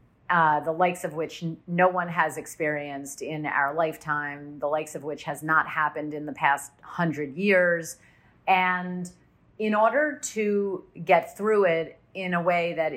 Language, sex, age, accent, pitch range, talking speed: English, female, 40-59, American, 155-185 Hz, 160 wpm